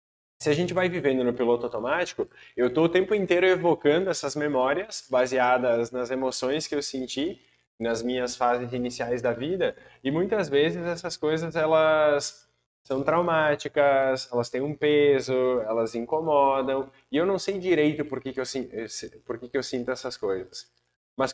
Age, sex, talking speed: 20-39, male, 165 wpm